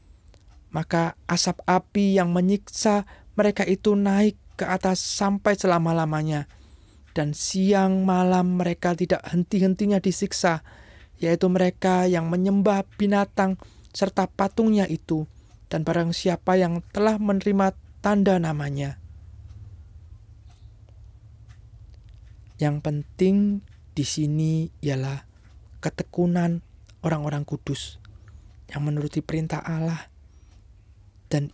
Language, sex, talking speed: Indonesian, male, 90 wpm